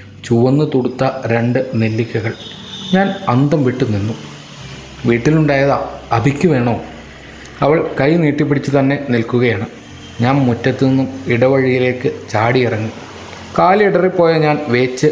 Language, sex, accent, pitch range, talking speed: Malayalam, male, native, 120-150 Hz, 100 wpm